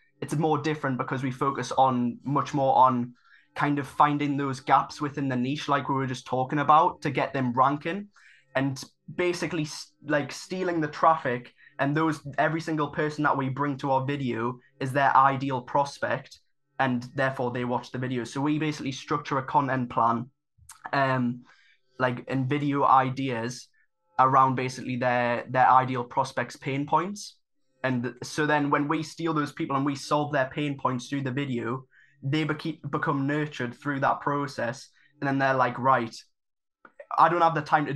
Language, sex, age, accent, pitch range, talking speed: English, male, 20-39, British, 125-150 Hz, 170 wpm